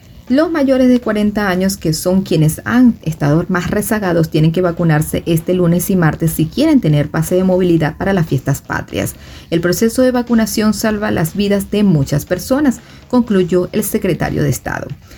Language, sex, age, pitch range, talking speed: Spanish, female, 40-59, 160-220 Hz, 175 wpm